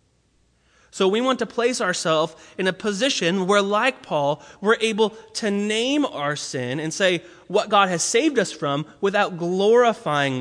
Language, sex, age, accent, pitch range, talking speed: English, male, 20-39, American, 140-190 Hz, 160 wpm